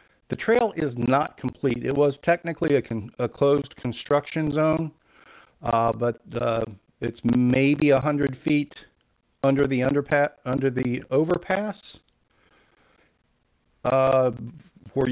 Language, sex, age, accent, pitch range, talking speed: English, male, 50-69, American, 115-145 Hz, 105 wpm